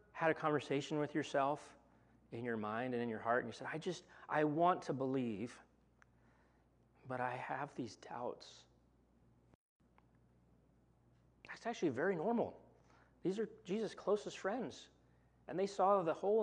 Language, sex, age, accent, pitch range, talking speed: English, male, 30-49, American, 110-155 Hz, 145 wpm